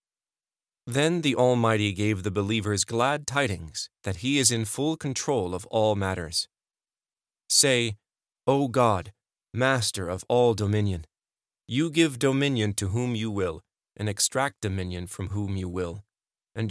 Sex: male